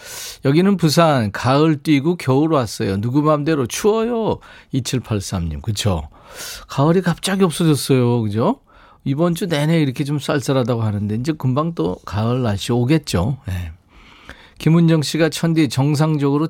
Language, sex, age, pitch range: Korean, male, 40-59, 105-155 Hz